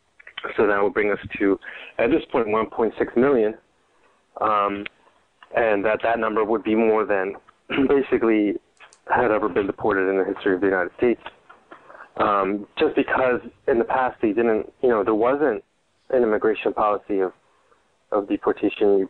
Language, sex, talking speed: English, male, 160 wpm